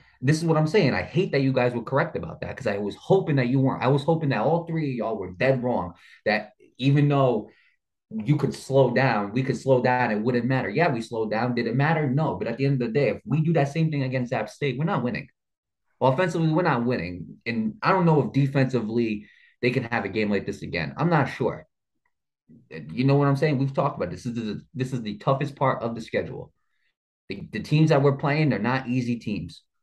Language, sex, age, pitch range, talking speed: English, male, 20-39, 115-145 Hz, 250 wpm